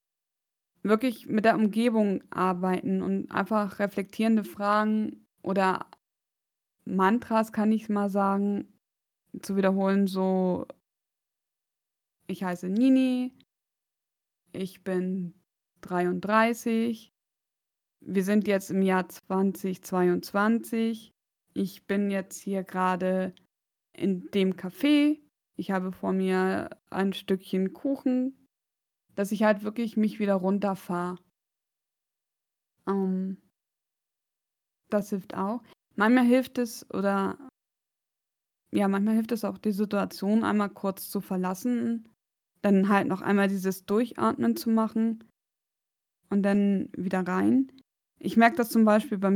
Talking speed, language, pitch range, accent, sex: 105 wpm, German, 190-225 Hz, German, female